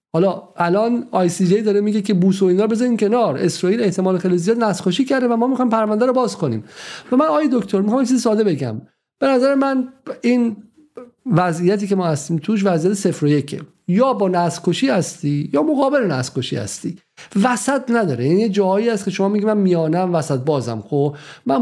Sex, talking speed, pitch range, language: male, 190 wpm, 155-215 Hz, Persian